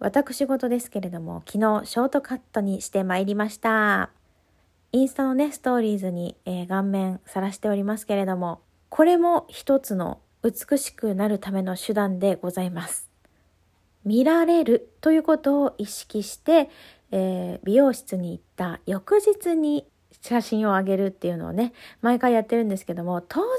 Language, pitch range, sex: Japanese, 190-270 Hz, female